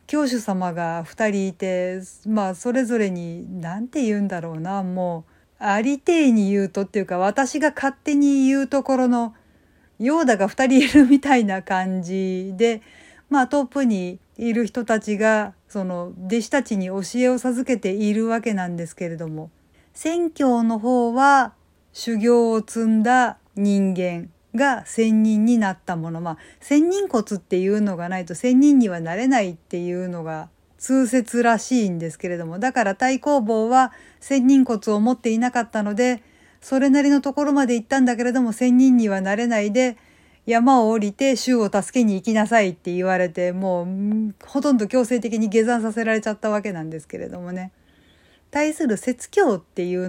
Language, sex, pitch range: Japanese, female, 185-255 Hz